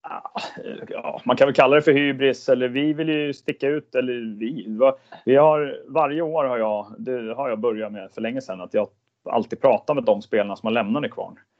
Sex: male